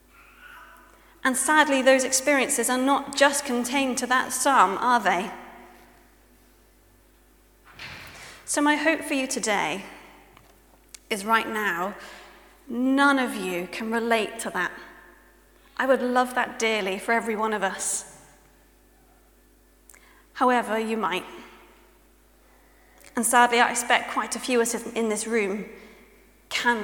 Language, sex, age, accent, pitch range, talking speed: English, female, 30-49, British, 210-255 Hz, 125 wpm